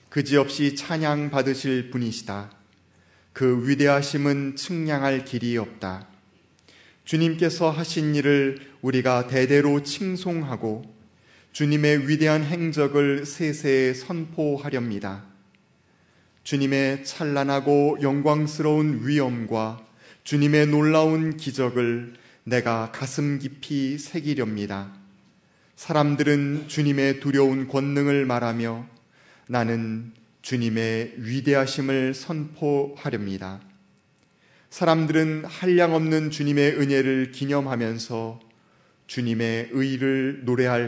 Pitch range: 115-145 Hz